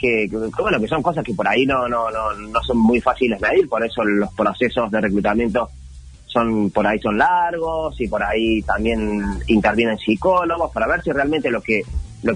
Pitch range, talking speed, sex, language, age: 105-130 Hz, 205 wpm, male, Spanish, 30-49